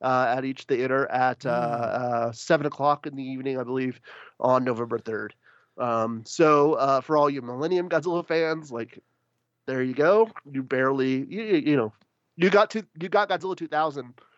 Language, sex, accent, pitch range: English, male, American, 125-165 Hz